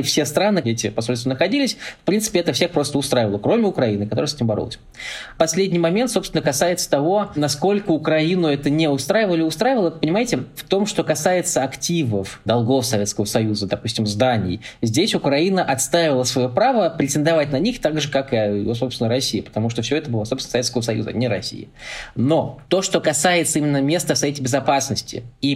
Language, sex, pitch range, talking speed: Russian, male, 120-160 Hz, 175 wpm